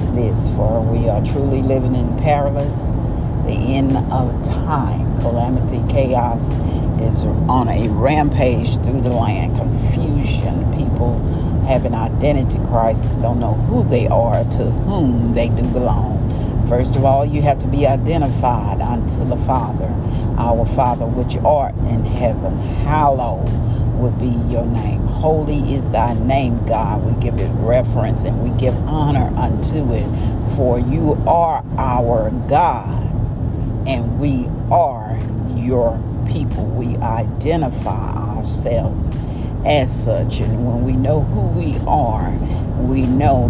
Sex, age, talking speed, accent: female, 50-69, 135 wpm, American